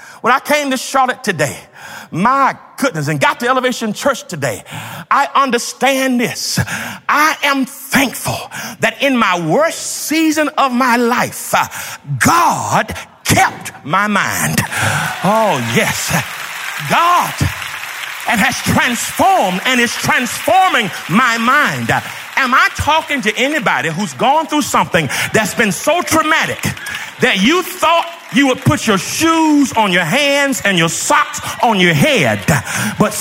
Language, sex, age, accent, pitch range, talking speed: English, male, 50-69, American, 220-300 Hz, 135 wpm